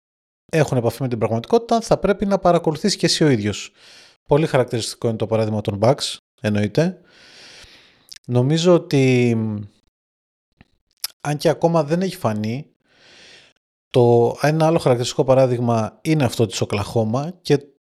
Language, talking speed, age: Greek, 130 wpm, 20-39